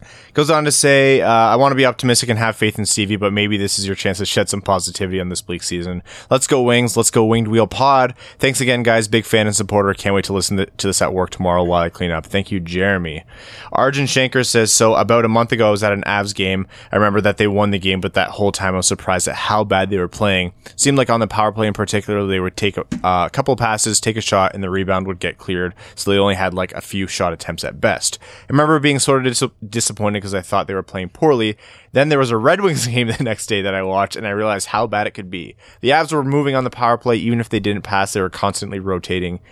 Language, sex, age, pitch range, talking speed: English, male, 20-39, 95-115 Hz, 275 wpm